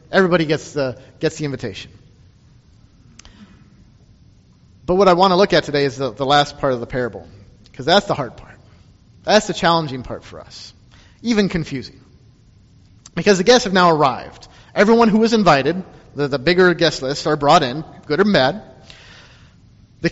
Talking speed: 165 wpm